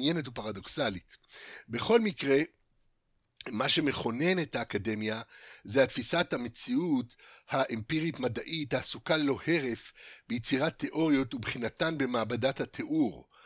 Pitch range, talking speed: 120-175 Hz, 85 wpm